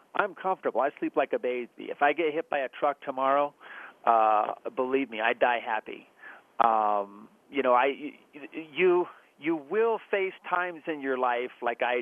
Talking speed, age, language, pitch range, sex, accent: 170 wpm, 40-59, English, 125-160 Hz, male, American